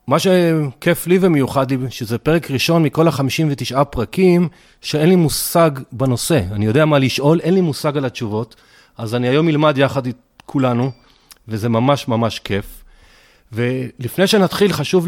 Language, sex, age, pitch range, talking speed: Hebrew, male, 40-59, 125-160 Hz, 150 wpm